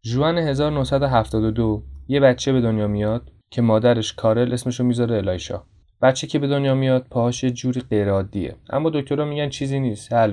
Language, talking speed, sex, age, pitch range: Persian, 155 wpm, male, 20-39, 105-130 Hz